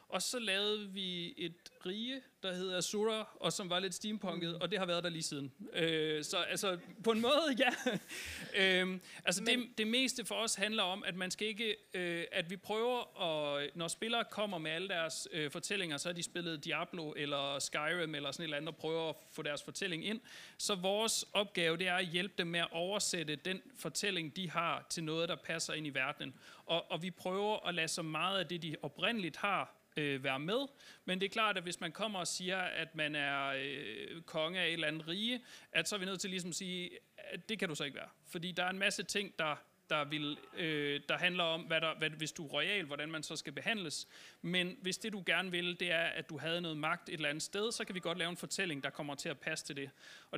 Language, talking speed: Danish, 240 wpm